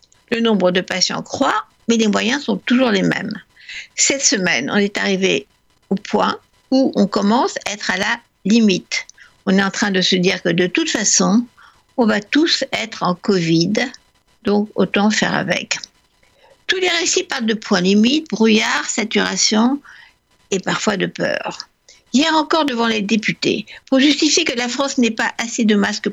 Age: 60-79